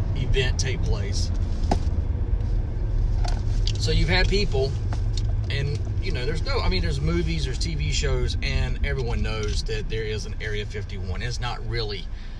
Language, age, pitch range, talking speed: English, 30-49, 90-105 Hz, 150 wpm